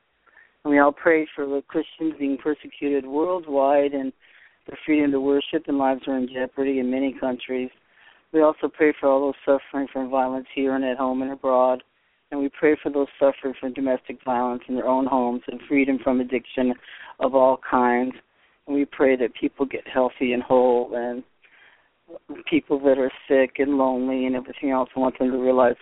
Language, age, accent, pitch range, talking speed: English, 40-59, American, 125-140 Hz, 185 wpm